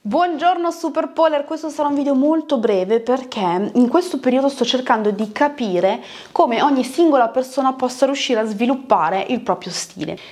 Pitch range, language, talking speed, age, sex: 200-265 Hz, Italian, 155 wpm, 20-39, female